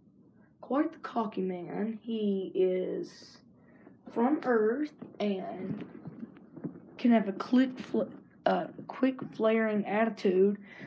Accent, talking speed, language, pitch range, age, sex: American, 100 wpm, English, 200-250 Hz, 20-39, female